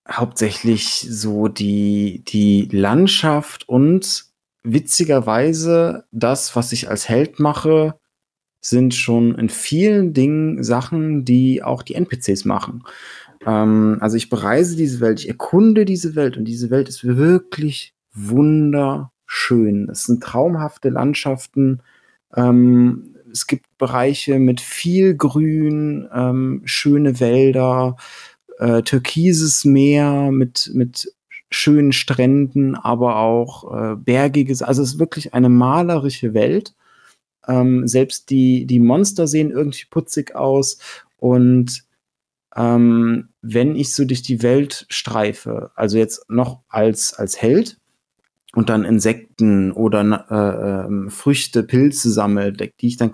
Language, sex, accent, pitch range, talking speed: German, male, German, 115-145 Hz, 120 wpm